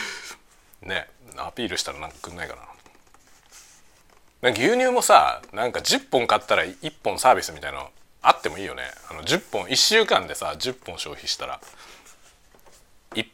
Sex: male